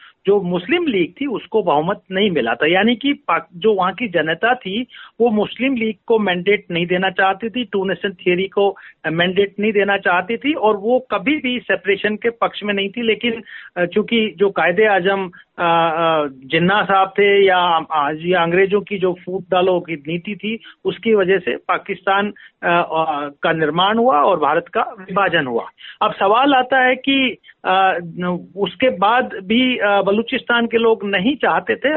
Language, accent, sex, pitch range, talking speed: Hindi, native, male, 180-220 Hz, 165 wpm